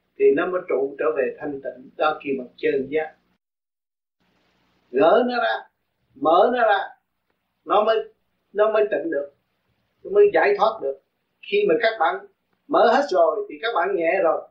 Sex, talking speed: male, 175 wpm